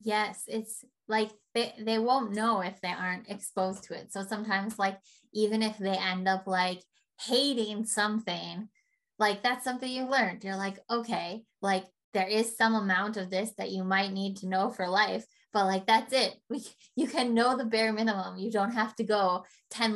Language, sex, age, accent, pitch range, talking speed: English, female, 20-39, American, 190-220 Hz, 190 wpm